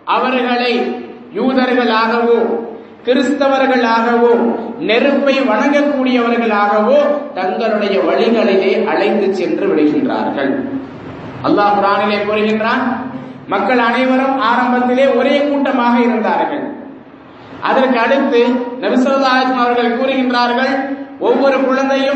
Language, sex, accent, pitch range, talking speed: English, male, Indian, 230-275 Hz, 85 wpm